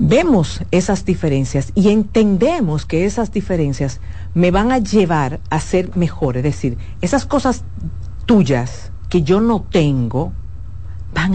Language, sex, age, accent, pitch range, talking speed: Spanish, female, 50-69, American, 115-185 Hz, 130 wpm